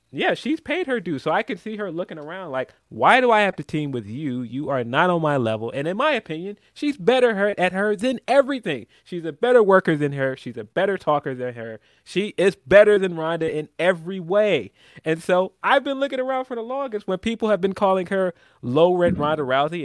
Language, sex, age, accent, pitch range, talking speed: English, male, 20-39, American, 135-195 Hz, 235 wpm